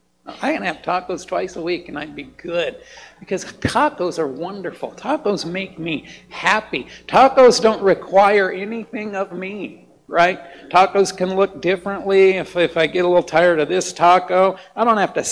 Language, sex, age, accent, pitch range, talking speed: English, male, 60-79, American, 160-200 Hz, 170 wpm